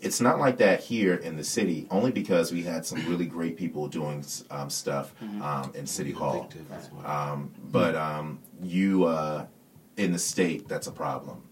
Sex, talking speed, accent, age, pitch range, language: male, 175 wpm, American, 30-49, 70-80 Hz, English